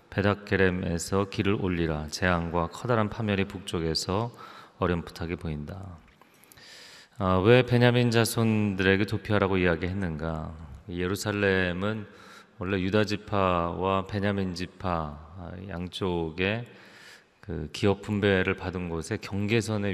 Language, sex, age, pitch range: Korean, male, 30-49, 85-105 Hz